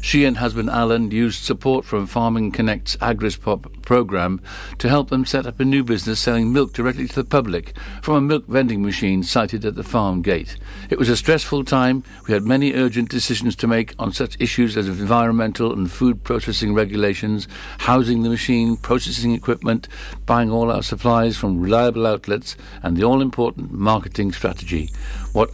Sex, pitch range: male, 100-125 Hz